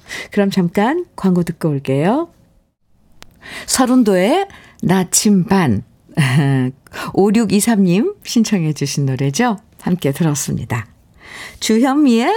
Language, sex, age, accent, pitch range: Korean, female, 50-69, native, 175-245 Hz